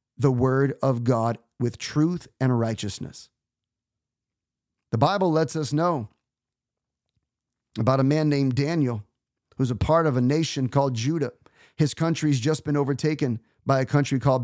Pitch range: 125-155 Hz